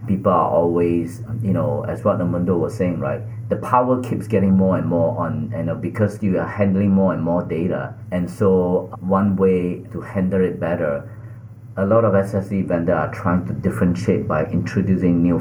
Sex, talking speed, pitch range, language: male, 200 wpm, 90-110 Hz, English